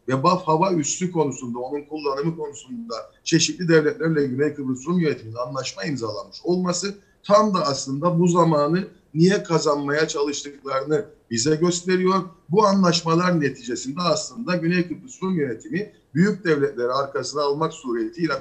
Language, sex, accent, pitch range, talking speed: Turkish, male, native, 140-185 Hz, 130 wpm